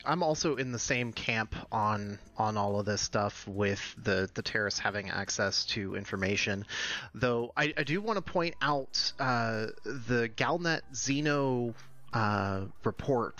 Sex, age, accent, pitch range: male, 30-49, American, 105-135 Hz